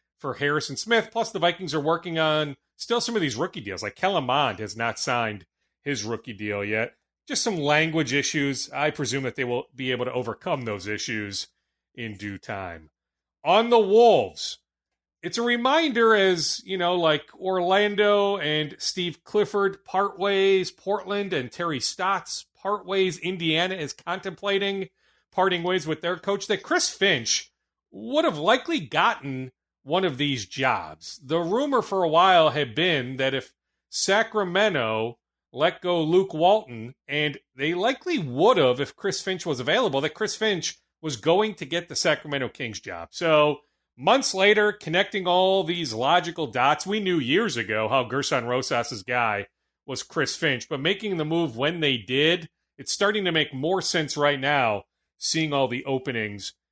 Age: 30-49